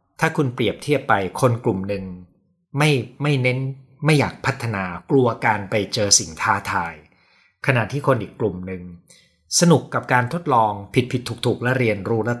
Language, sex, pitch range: Thai, male, 100-135 Hz